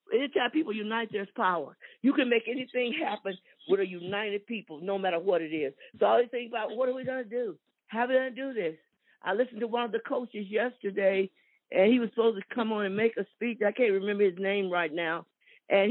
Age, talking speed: 50-69, 240 wpm